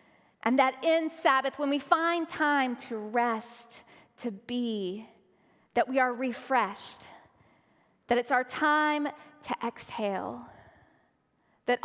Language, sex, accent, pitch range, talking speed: English, female, American, 235-290 Hz, 115 wpm